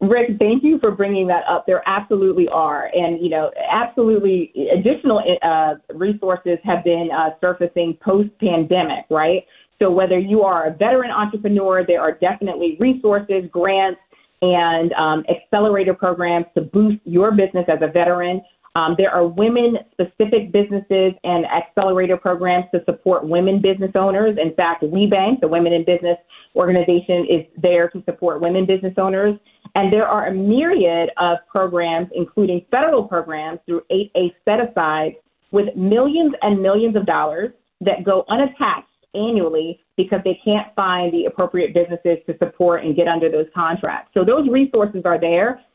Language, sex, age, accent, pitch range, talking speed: English, female, 30-49, American, 170-205 Hz, 155 wpm